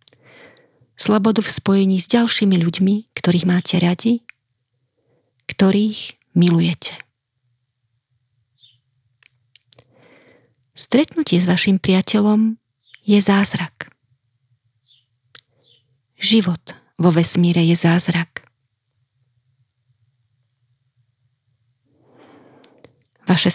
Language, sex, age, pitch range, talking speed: Slovak, female, 40-59, 125-195 Hz, 60 wpm